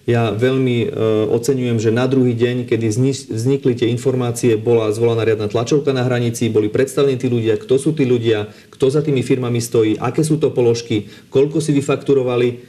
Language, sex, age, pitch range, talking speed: Slovak, male, 40-59, 115-130 Hz, 180 wpm